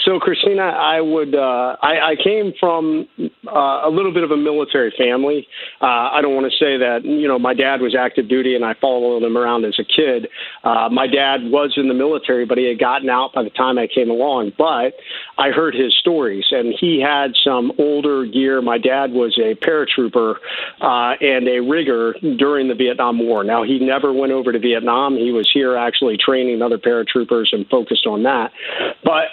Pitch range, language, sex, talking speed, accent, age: 125-145 Hz, English, male, 205 wpm, American, 50-69